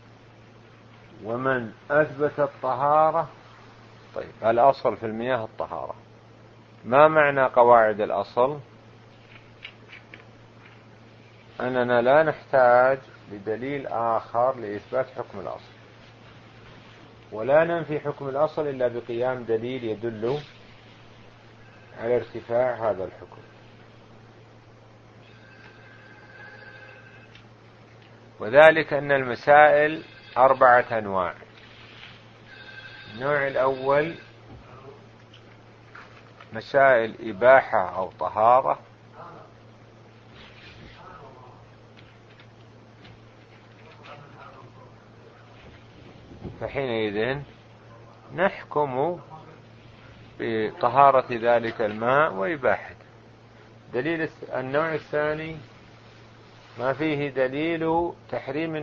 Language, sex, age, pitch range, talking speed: Arabic, male, 50-69, 110-130 Hz, 55 wpm